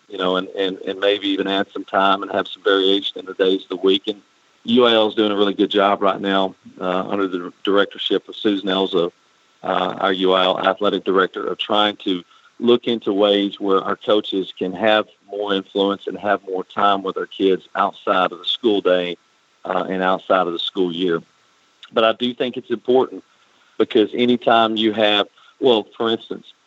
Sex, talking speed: male, 195 wpm